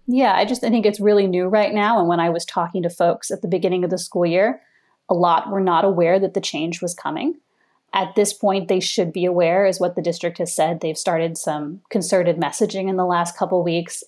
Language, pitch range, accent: English, 170-205 Hz, American